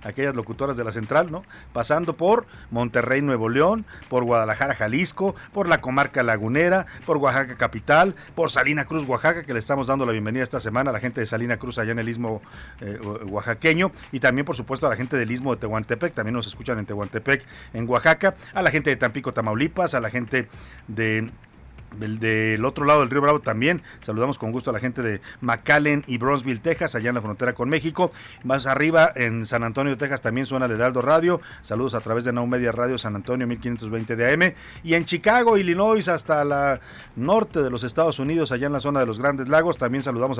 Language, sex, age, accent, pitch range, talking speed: Spanish, male, 40-59, Mexican, 115-150 Hz, 210 wpm